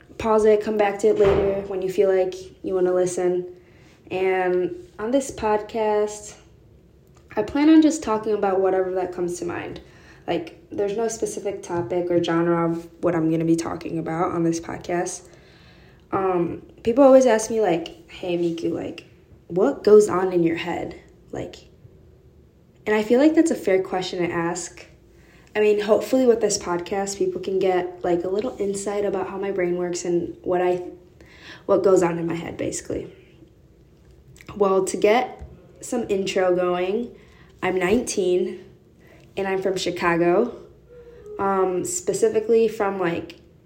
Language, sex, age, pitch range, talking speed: English, female, 20-39, 175-210 Hz, 160 wpm